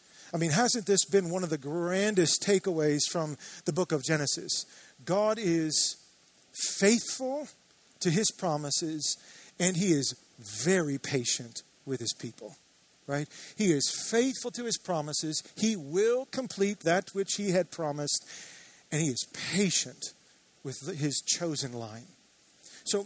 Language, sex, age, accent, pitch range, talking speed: English, male, 40-59, American, 145-195 Hz, 140 wpm